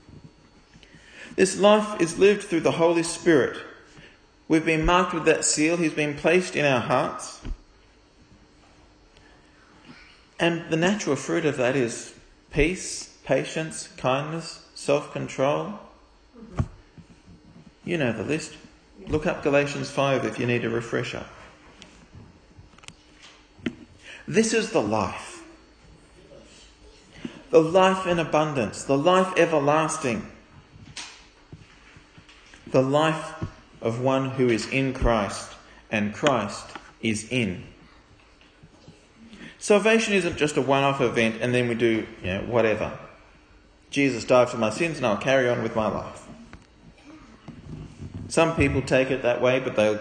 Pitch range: 120-165 Hz